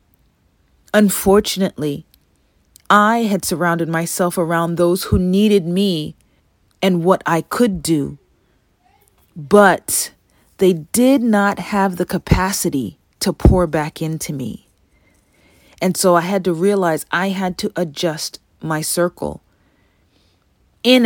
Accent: American